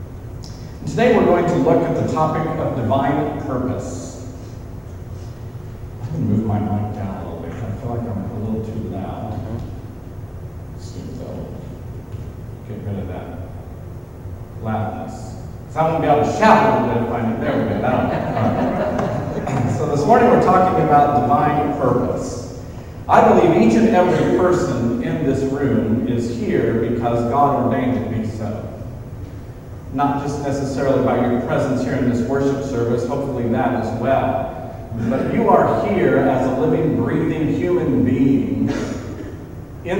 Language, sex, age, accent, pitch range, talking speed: English, male, 50-69, American, 110-140 Hz, 145 wpm